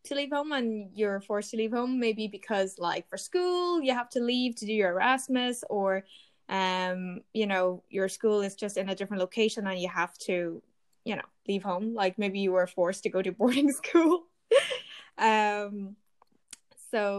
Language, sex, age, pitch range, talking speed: English, female, 10-29, 190-235 Hz, 190 wpm